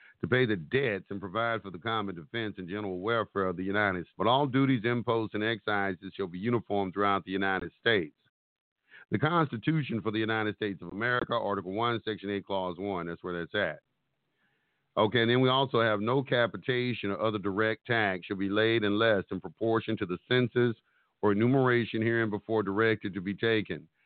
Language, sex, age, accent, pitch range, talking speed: English, male, 50-69, American, 100-115 Hz, 190 wpm